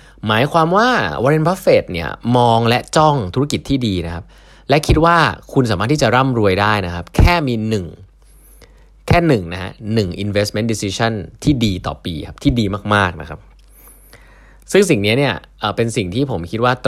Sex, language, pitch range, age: male, Thai, 90-125 Hz, 20-39